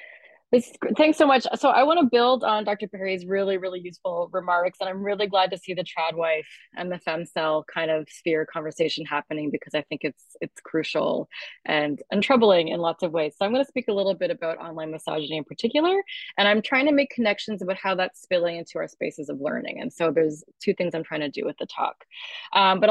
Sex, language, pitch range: female, English, 170-210 Hz